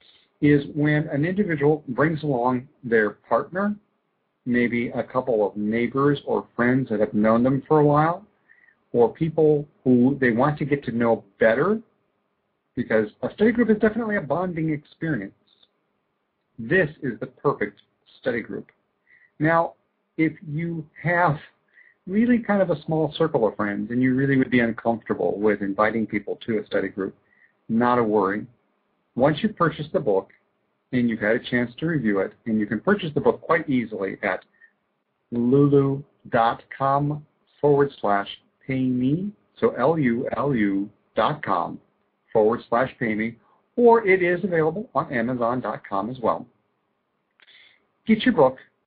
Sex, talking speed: male, 145 wpm